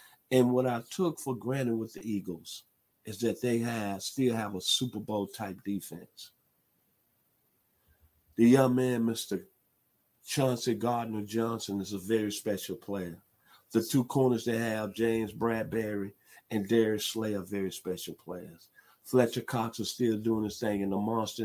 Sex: male